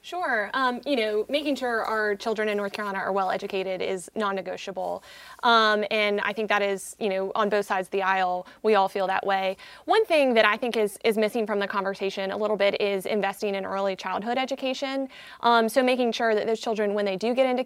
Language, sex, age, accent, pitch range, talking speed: English, female, 20-39, American, 195-225 Hz, 225 wpm